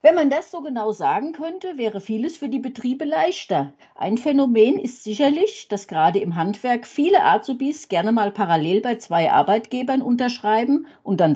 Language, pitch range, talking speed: German, 185-275 Hz, 170 wpm